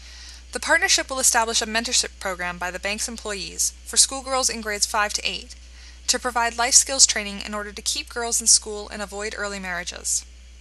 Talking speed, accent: 190 wpm, American